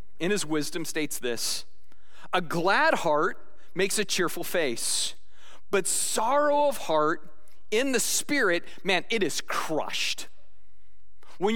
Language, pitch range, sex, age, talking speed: English, 150-215 Hz, male, 30-49, 125 wpm